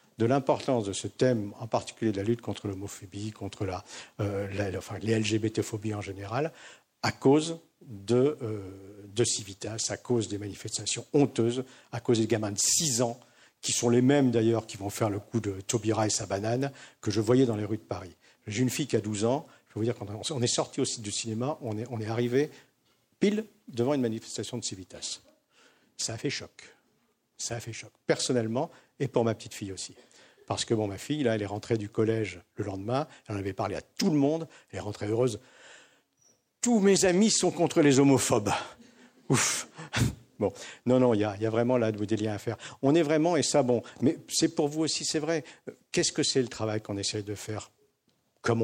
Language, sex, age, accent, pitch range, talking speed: French, male, 50-69, French, 105-130 Hz, 220 wpm